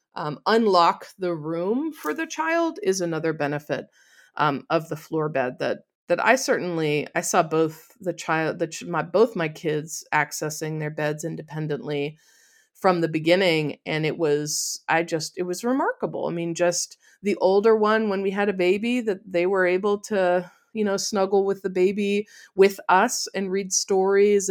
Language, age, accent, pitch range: English, 30-49, American, 170-235 Hz